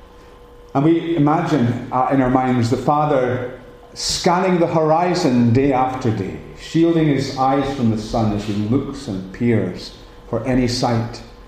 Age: 40-59